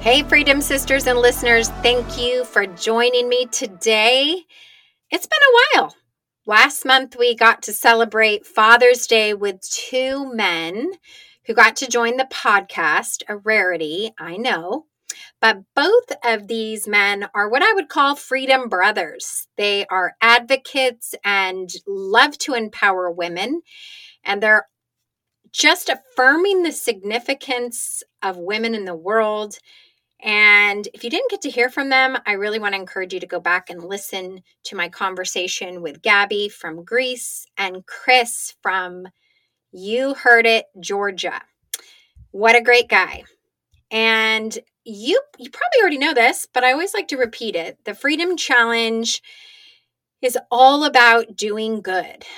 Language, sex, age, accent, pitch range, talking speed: English, female, 30-49, American, 200-260 Hz, 145 wpm